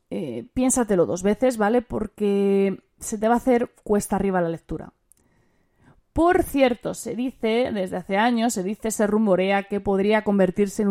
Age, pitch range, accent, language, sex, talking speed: 30-49, 195-245 Hz, Spanish, Spanish, female, 165 wpm